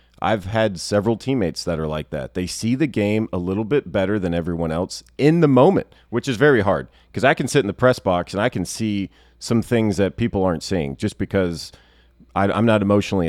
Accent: American